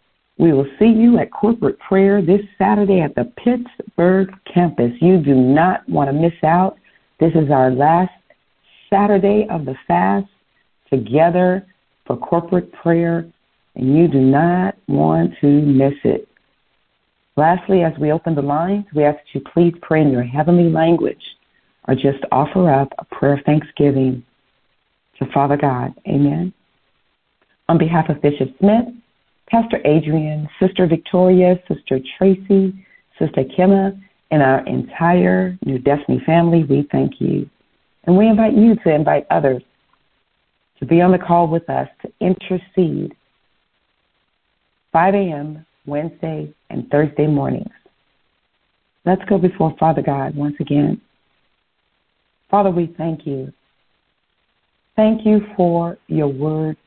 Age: 50-69